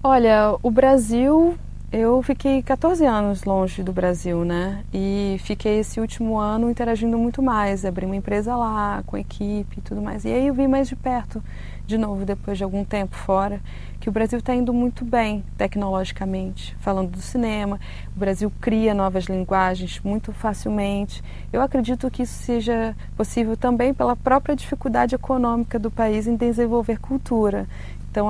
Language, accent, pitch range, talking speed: Portuguese, Brazilian, 195-240 Hz, 165 wpm